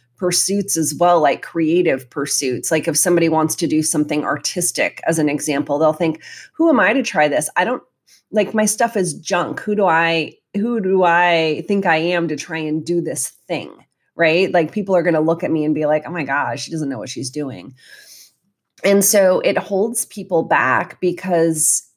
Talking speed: 205 wpm